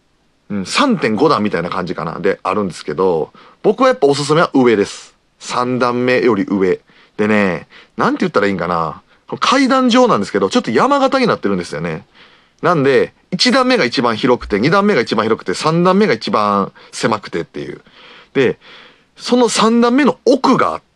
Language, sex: Japanese, male